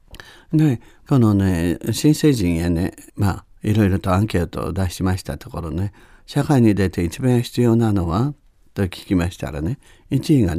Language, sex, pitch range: Japanese, male, 85-125 Hz